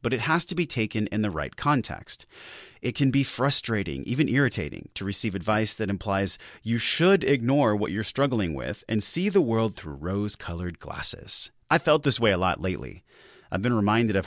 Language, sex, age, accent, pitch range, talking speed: English, male, 30-49, American, 95-120 Hz, 195 wpm